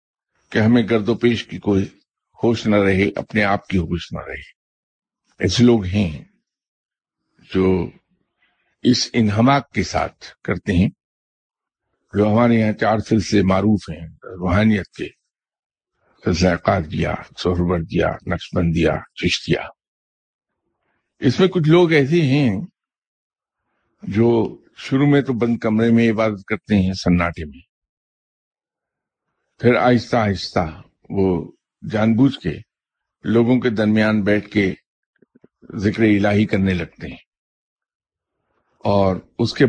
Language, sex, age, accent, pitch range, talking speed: English, male, 60-79, Indian, 90-115 Hz, 105 wpm